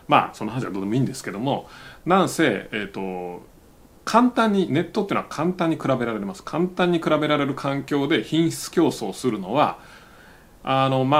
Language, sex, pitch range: Japanese, male, 115-175 Hz